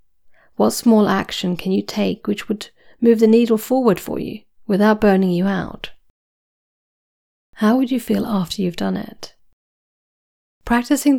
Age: 40-59